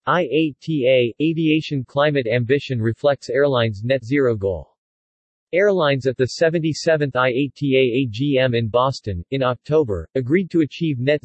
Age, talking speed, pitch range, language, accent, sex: 40-59, 125 wpm, 120-150 Hz, English, American, male